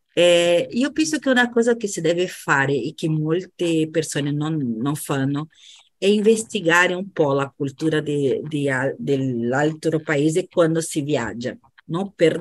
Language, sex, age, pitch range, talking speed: Portuguese, female, 40-59, 150-190 Hz, 140 wpm